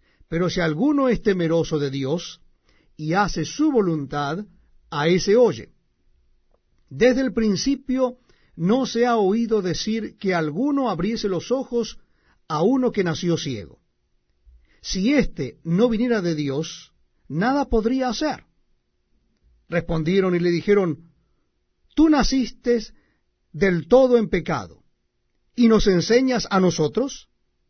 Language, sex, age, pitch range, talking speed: Spanish, male, 50-69, 155-210 Hz, 120 wpm